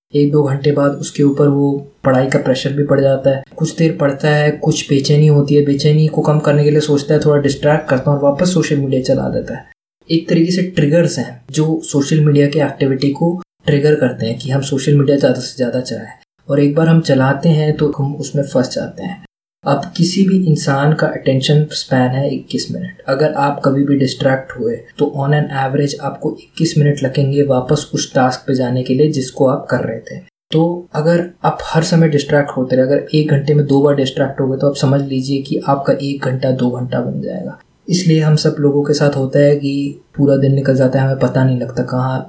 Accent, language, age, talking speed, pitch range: native, Hindi, 20-39, 225 wpm, 135-150 Hz